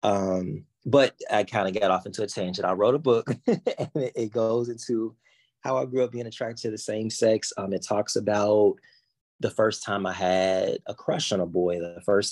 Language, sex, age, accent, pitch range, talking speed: English, male, 20-39, American, 95-105 Hz, 215 wpm